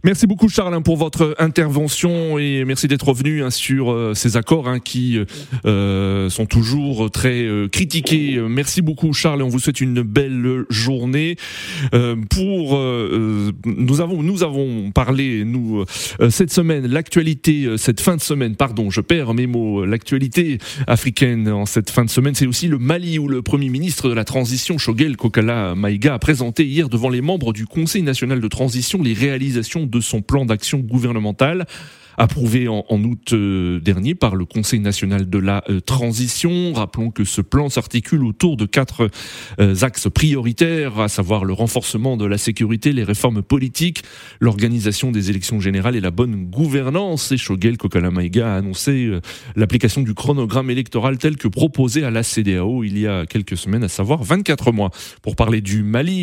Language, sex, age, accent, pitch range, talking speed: French, male, 30-49, French, 110-145 Hz, 180 wpm